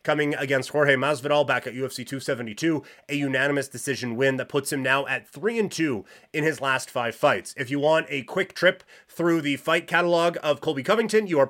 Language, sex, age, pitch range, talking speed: English, male, 30-49, 130-160 Hz, 210 wpm